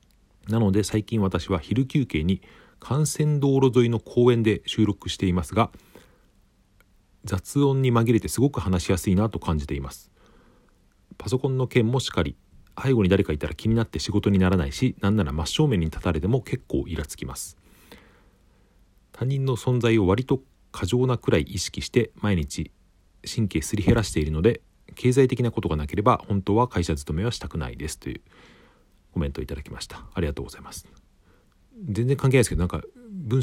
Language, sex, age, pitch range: Japanese, male, 40-59, 80-115 Hz